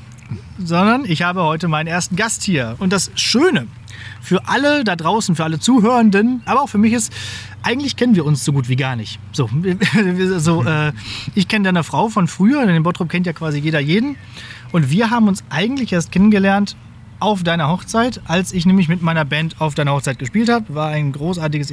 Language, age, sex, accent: German, 30-49, male, German